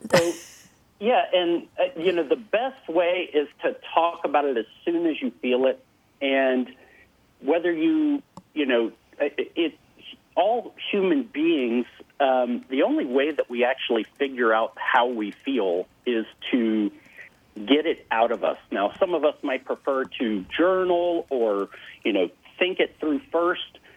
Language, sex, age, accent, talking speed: English, male, 50-69, American, 165 wpm